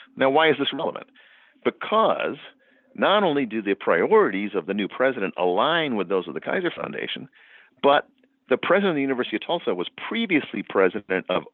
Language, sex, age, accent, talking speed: English, male, 50-69, American, 175 wpm